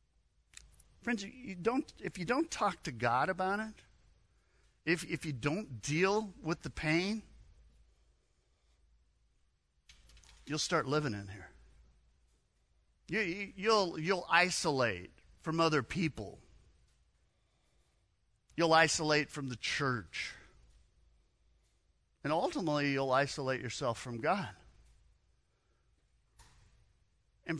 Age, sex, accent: 50-69, male, American